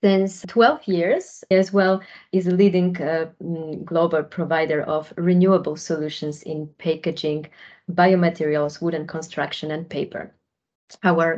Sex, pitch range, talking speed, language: female, 160-190 Hz, 115 wpm, English